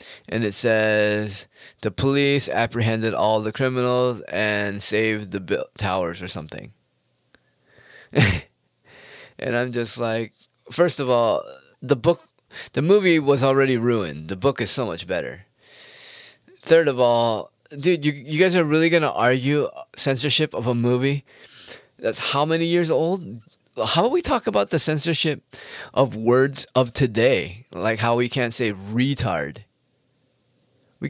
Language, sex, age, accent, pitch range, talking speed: English, male, 20-39, American, 115-155 Hz, 145 wpm